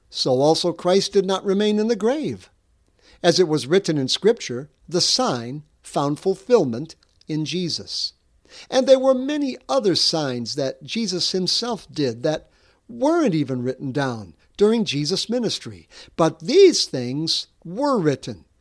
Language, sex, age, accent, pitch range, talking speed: English, male, 60-79, American, 150-235 Hz, 140 wpm